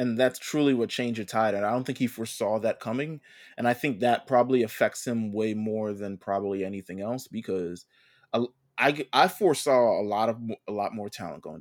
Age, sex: 20-39, male